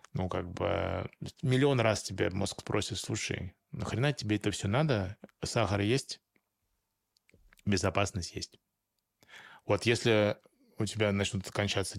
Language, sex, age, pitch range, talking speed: Russian, male, 20-39, 95-110 Hz, 120 wpm